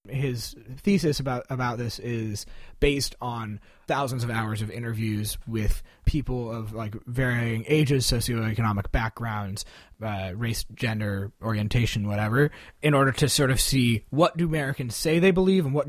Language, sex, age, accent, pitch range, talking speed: English, male, 20-39, American, 110-135 Hz, 150 wpm